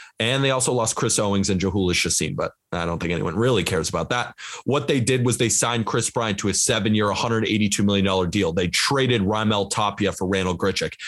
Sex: male